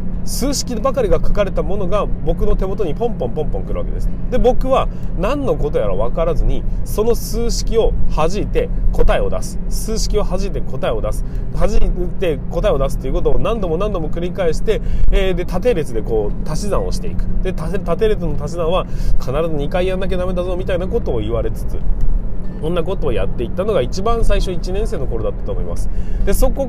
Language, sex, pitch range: Japanese, male, 125-210 Hz